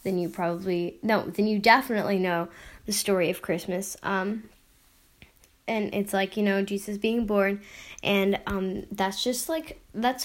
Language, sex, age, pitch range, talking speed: English, female, 10-29, 185-230 Hz, 160 wpm